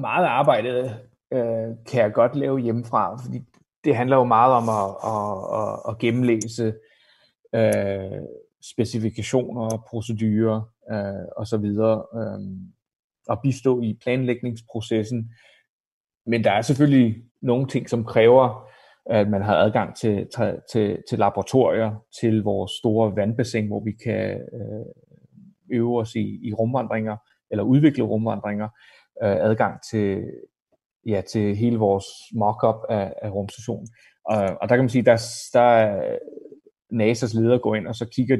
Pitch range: 105-120 Hz